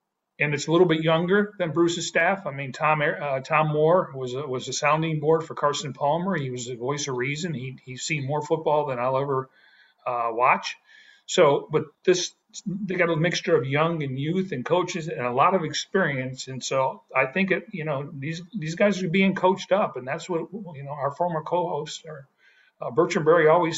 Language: English